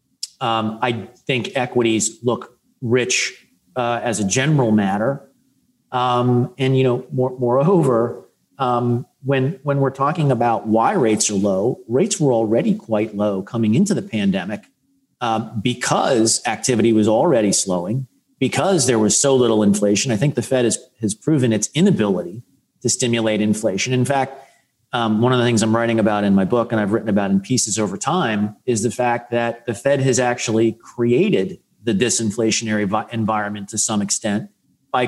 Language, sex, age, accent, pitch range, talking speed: English, male, 40-59, American, 110-130 Hz, 165 wpm